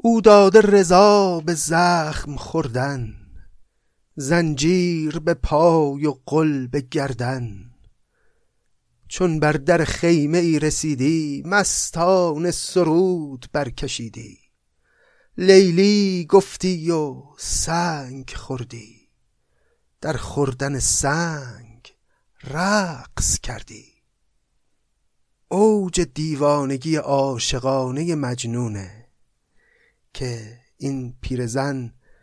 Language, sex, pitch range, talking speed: Persian, male, 125-165 Hz, 70 wpm